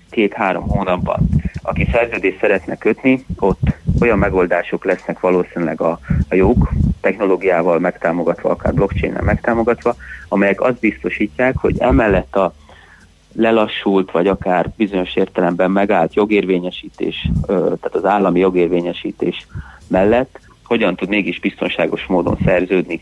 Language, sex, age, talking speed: Hungarian, male, 30-49, 110 wpm